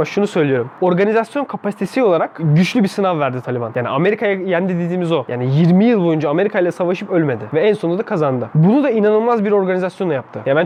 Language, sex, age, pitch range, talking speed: Turkish, male, 20-39, 165-235 Hz, 215 wpm